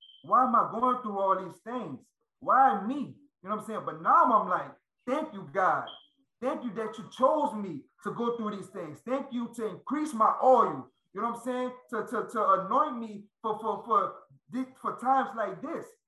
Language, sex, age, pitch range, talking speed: English, male, 20-39, 195-245 Hz, 210 wpm